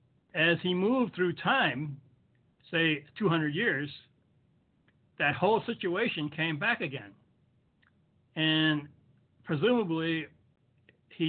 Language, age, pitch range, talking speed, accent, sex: English, 60-79, 130-170 Hz, 90 wpm, American, male